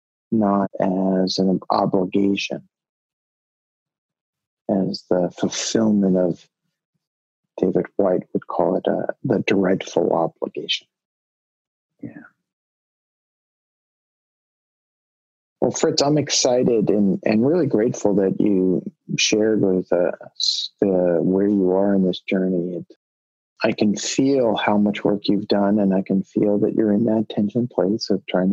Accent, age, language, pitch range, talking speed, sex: American, 40-59, English, 90-105 Hz, 125 wpm, male